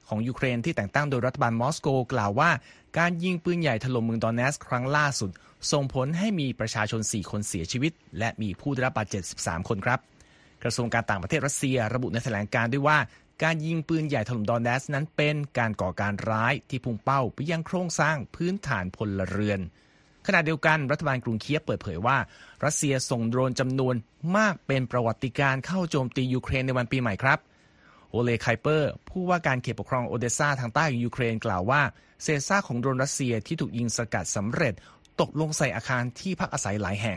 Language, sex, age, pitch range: Thai, male, 30-49, 115-145 Hz